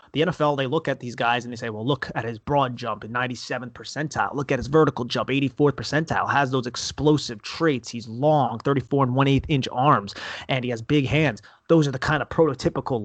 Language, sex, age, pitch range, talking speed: English, male, 30-49, 125-150 Hz, 220 wpm